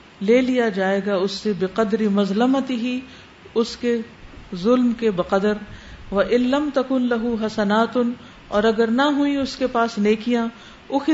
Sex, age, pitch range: female, 50-69, 195-235 Hz